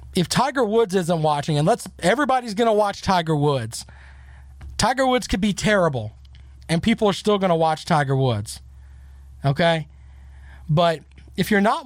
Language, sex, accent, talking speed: English, male, American, 160 wpm